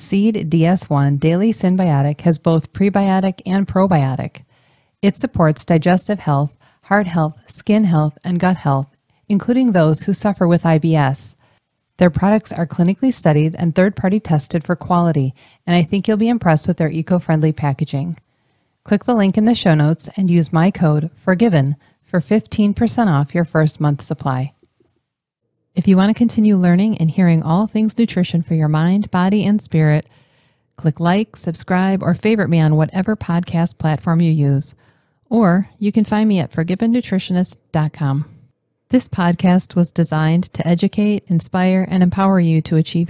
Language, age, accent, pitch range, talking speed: English, 30-49, American, 155-190 Hz, 155 wpm